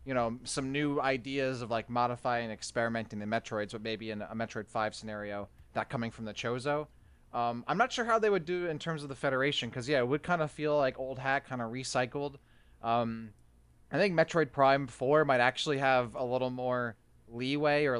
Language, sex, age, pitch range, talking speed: English, male, 20-39, 115-140 Hz, 215 wpm